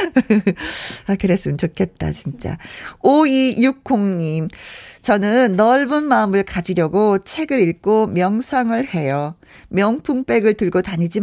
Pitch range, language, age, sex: 175-250 Hz, Korean, 40-59, female